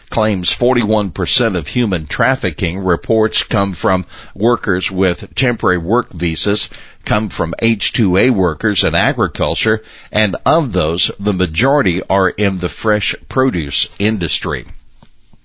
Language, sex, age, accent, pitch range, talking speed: English, male, 60-79, American, 90-115 Hz, 115 wpm